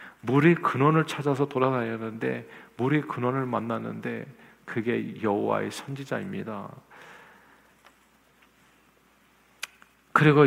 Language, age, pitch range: Korean, 40-59, 105-130 Hz